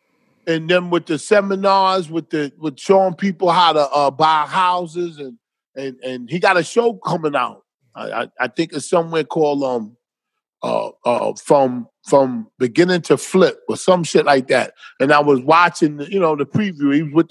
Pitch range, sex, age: 145-190 Hz, male, 30-49